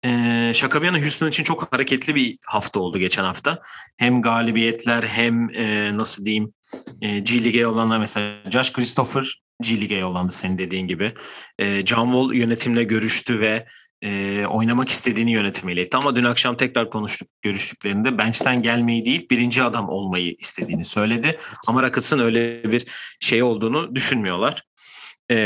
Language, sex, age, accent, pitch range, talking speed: Turkish, male, 30-49, native, 110-135 Hz, 145 wpm